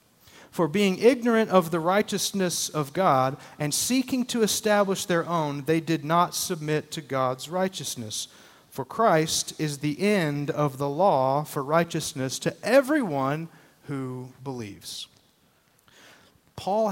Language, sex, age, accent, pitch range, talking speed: English, male, 40-59, American, 150-195 Hz, 130 wpm